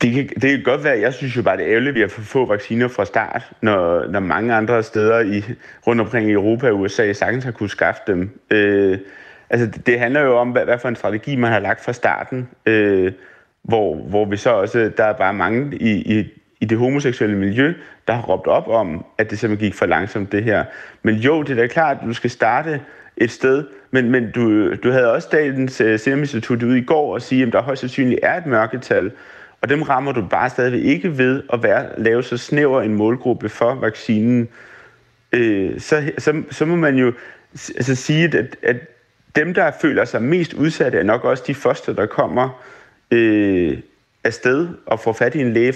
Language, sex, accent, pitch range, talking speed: Danish, male, native, 110-130 Hz, 215 wpm